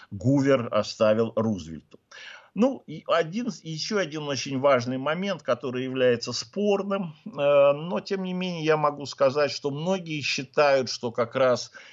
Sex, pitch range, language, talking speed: male, 115-160 Hz, Russian, 135 wpm